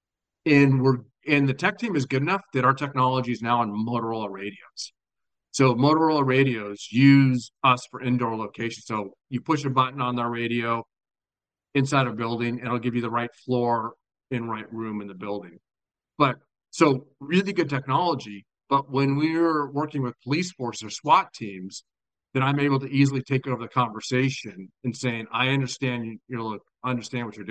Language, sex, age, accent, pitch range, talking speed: English, male, 40-59, American, 115-140 Hz, 180 wpm